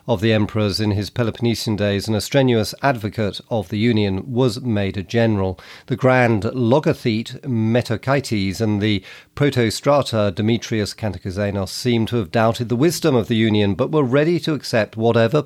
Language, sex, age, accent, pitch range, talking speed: English, male, 40-59, British, 105-140 Hz, 165 wpm